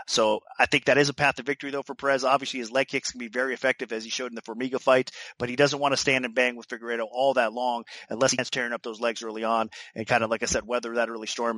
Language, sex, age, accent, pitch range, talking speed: English, male, 30-49, American, 120-140 Hz, 300 wpm